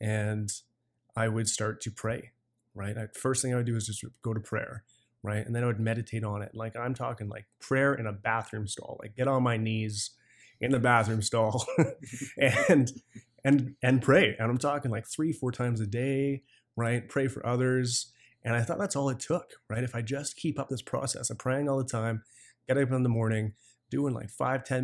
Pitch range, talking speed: 110-130 Hz, 215 wpm